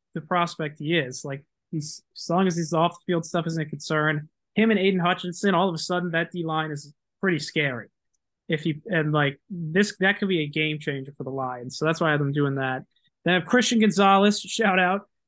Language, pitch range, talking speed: English, 150-185 Hz, 235 wpm